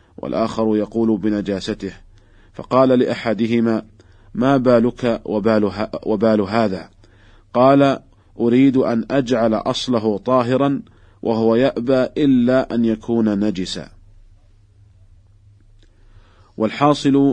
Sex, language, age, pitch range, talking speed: male, Arabic, 40-59, 100-120 Hz, 75 wpm